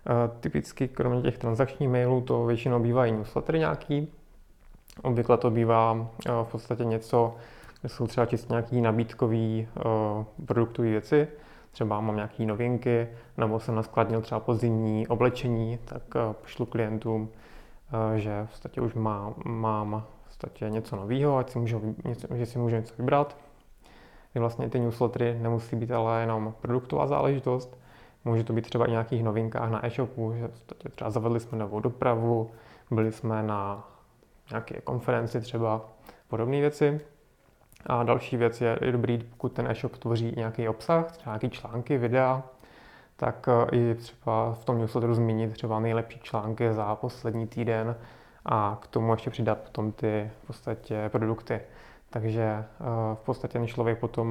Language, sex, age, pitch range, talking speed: Czech, male, 20-39, 110-125 Hz, 145 wpm